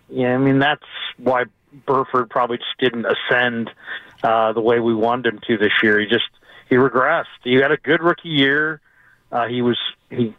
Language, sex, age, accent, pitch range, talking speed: English, male, 40-59, American, 120-145 Hz, 190 wpm